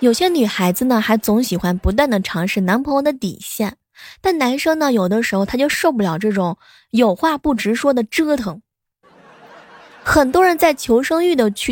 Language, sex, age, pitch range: Chinese, female, 20-39, 210-300 Hz